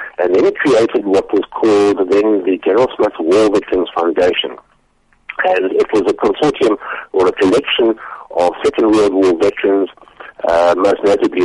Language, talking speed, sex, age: English, 155 wpm, male, 50-69